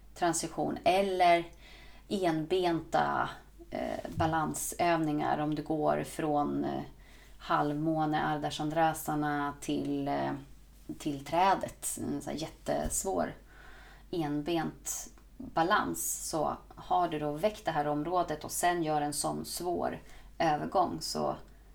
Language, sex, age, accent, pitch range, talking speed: Swedish, female, 30-49, native, 145-175 Hz, 100 wpm